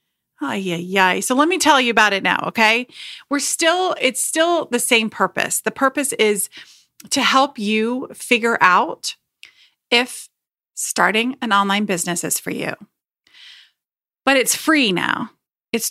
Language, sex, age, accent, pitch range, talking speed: English, female, 30-49, American, 205-270 Hz, 160 wpm